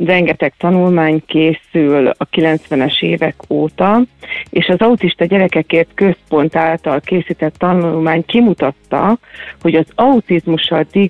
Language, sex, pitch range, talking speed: Hungarian, female, 160-205 Hz, 105 wpm